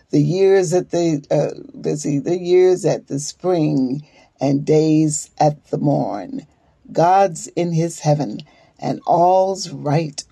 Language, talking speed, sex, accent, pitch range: English, 140 wpm, female, American, 150-175 Hz